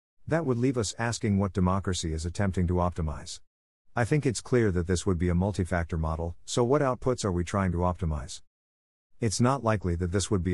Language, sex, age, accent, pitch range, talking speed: English, male, 50-69, American, 85-115 Hz, 210 wpm